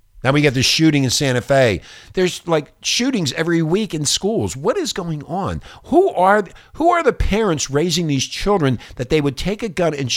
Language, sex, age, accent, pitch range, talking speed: English, male, 50-69, American, 105-155 Hz, 205 wpm